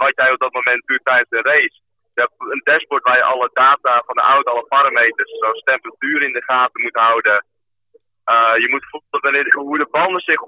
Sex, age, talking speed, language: male, 30-49, 210 wpm, Dutch